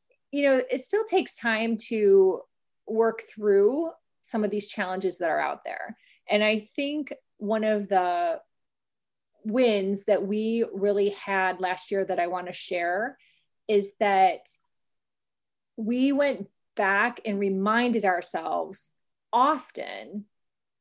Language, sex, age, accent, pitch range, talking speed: English, female, 20-39, American, 200-245 Hz, 125 wpm